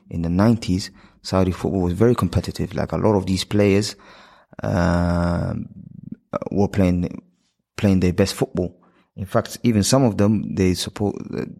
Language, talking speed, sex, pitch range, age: English, 150 wpm, male, 95-105 Hz, 20-39